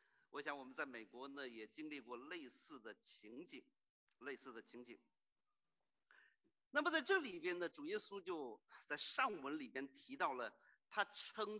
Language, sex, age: Chinese, male, 50-69